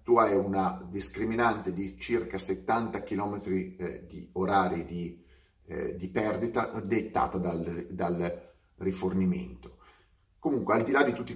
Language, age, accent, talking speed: Italian, 30-49, native, 130 wpm